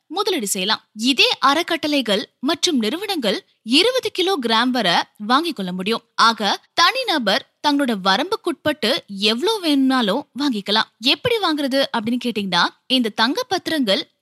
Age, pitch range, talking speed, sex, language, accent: 20-39, 225-335 Hz, 50 wpm, female, Tamil, native